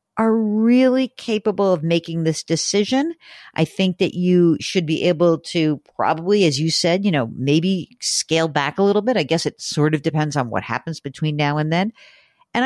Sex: female